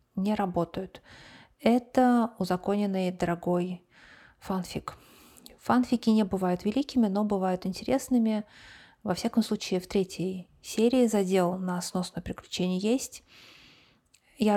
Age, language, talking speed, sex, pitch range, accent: 30-49, Russian, 105 wpm, female, 180-220 Hz, native